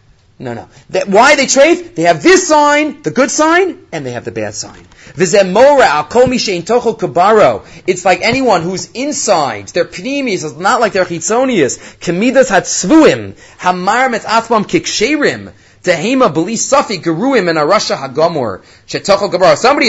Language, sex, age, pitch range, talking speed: English, male, 30-49, 145-205 Hz, 95 wpm